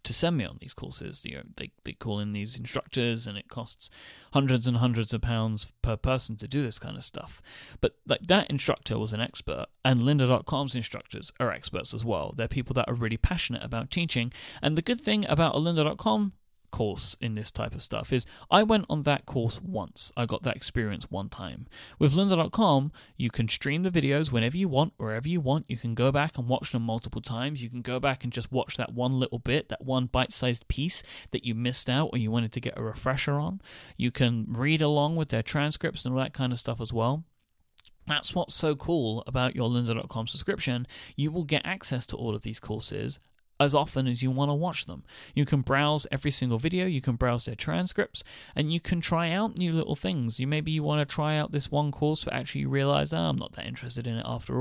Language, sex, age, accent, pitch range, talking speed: English, male, 30-49, British, 115-150 Hz, 230 wpm